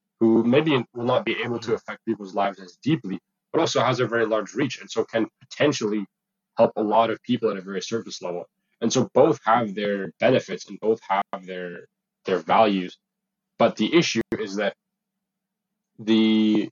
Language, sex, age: English, male, 20-39